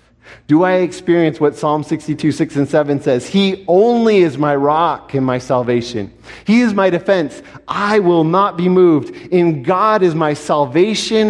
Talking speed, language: 170 wpm, English